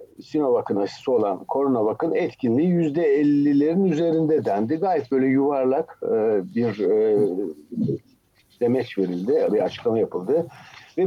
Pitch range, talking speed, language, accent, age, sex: 120-165 Hz, 105 wpm, Turkish, native, 60-79, male